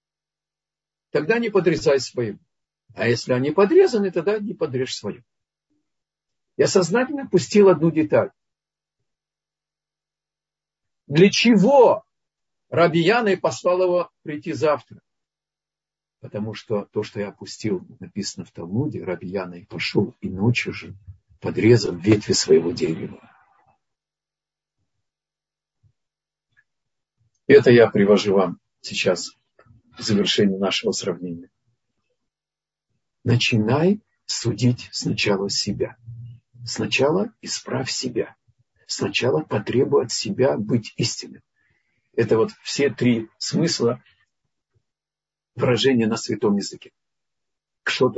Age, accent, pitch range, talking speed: 50-69, native, 110-185 Hz, 95 wpm